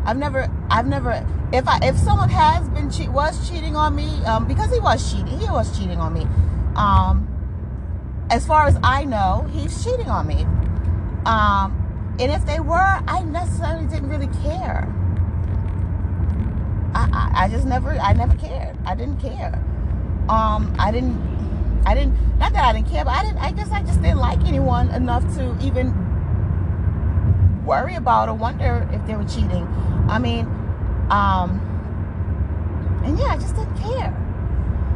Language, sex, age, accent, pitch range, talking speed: English, female, 30-49, American, 85-95 Hz, 165 wpm